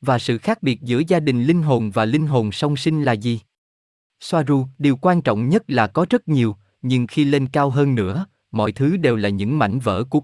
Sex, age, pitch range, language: male, 20-39, 110-150 Hz, Vietnamese